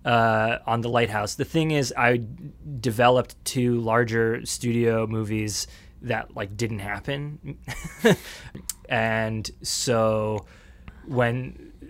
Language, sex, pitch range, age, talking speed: English, male, 100-115 Hz, 20-39, 100 wpm